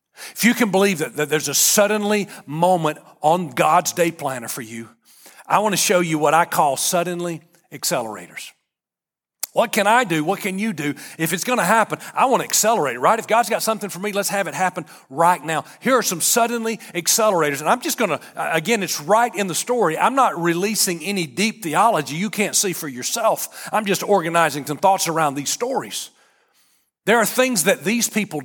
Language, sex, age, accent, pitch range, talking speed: English, male, 40-59, American, 155-215 Hz, 205 wpm